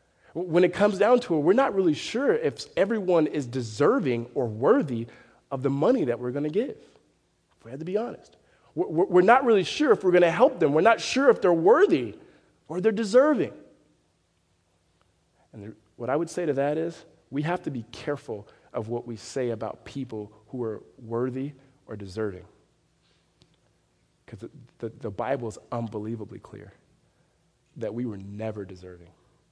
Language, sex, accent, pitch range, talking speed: English, male, American, 110-165 Hz, 170 wpm